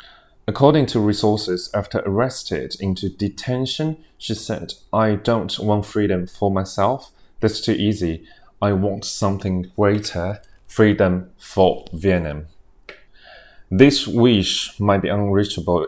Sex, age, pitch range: male, 30-49, 90-105 Hz